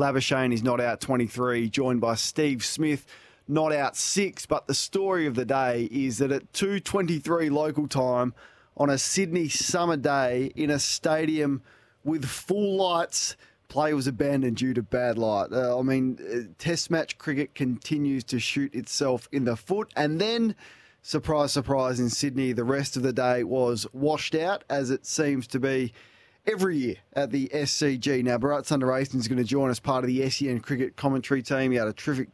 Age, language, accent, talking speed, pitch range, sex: 20-39, English, Australian, 180 wpm, 125-150 Hz, male